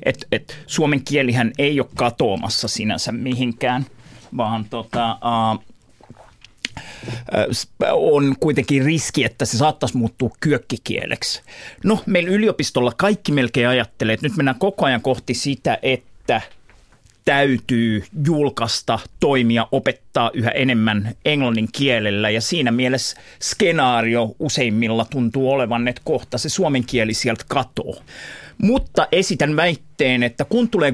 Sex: male